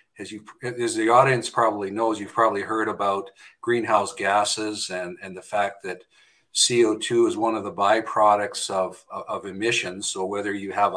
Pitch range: 105-170 Hz